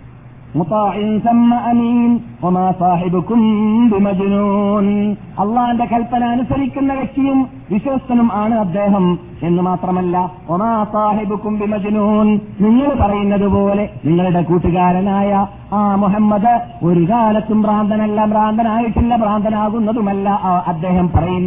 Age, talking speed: 40-59, 115 wpm